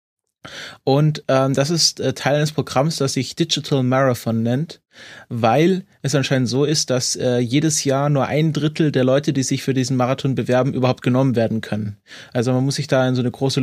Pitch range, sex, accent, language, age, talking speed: 125-145 Hz, male, German, German, 20-39, 205 wpm